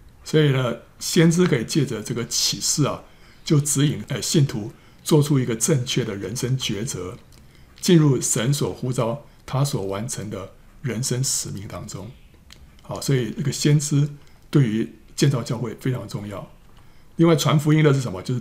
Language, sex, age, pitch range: Chinese, male, 60-79, 110-145 Hz